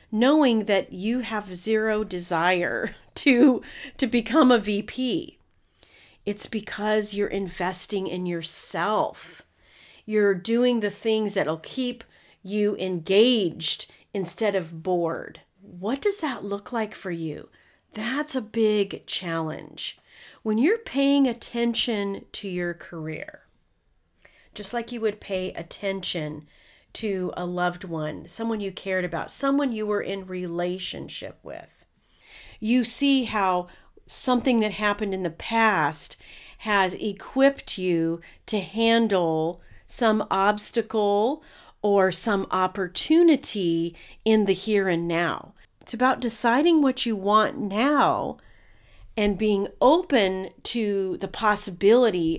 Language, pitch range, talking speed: English, 180-230 Hz, 120 wpm